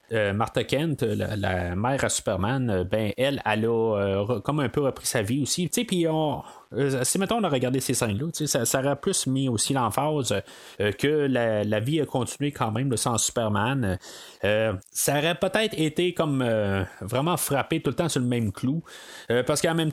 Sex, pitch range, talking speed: male, 110-155 Hz, 205 wpm